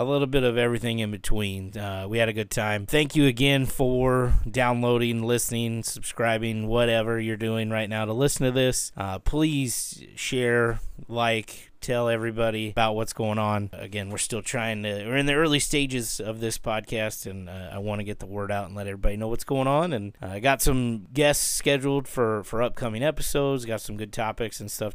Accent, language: American, English